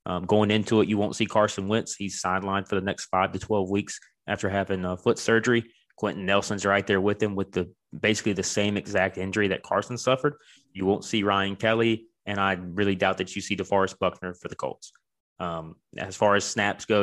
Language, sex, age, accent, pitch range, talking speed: English, male, 20-39, American, 95-110 Hz, 220 wpm